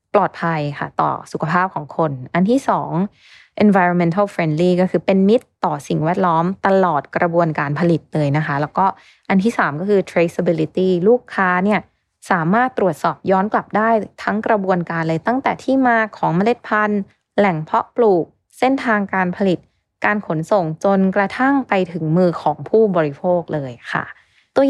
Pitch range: 175-225 Hz